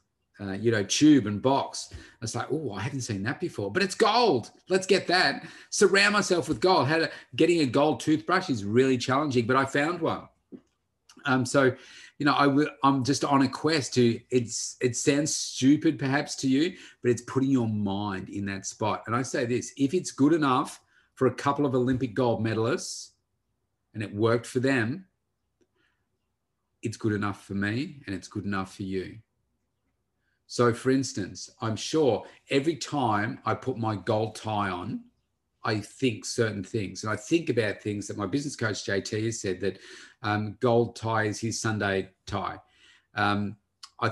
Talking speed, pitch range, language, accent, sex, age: 180 wpm, 105-135 Hz, English, Australian, male, 30-49